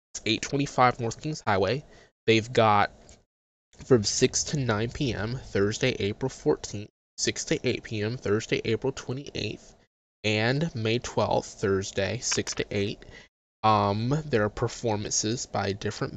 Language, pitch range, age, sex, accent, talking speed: English, 100-125 Hz, 20-39, male, American, 120 wpm